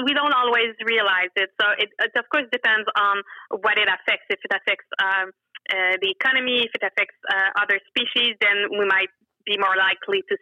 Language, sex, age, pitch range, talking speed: English, female, 30-49, 205-275 Hz, 200 wpm